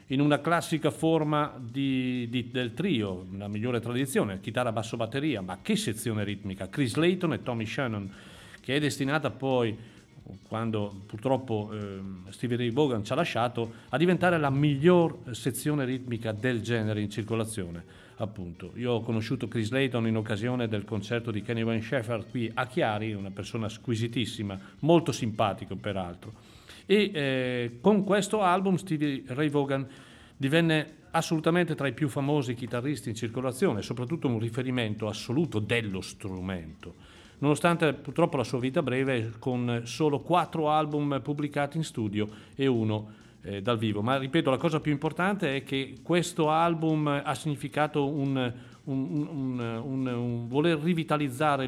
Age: 40-59